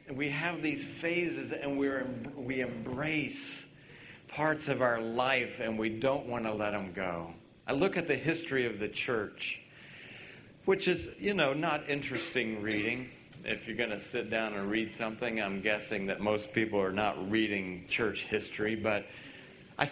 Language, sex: English, male